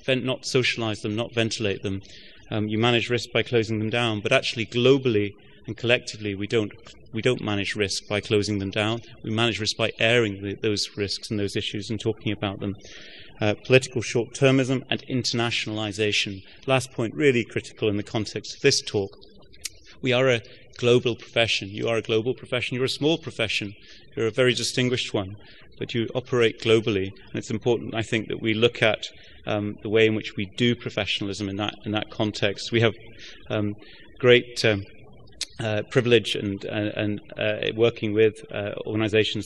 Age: 30-49